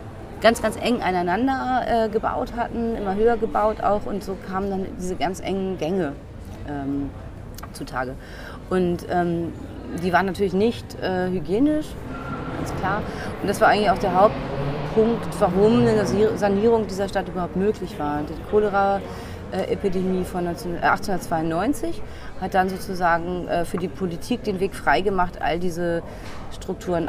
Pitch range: 155-200 Hz